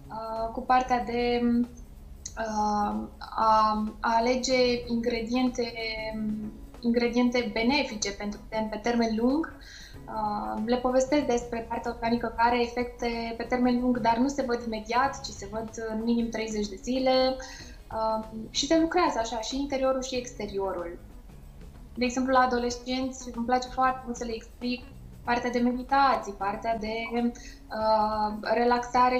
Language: Romanian